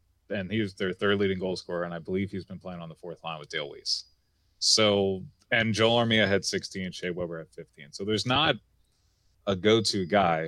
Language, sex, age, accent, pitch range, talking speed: English, male, 30-49, American, 85-105 Hz, 220 wpm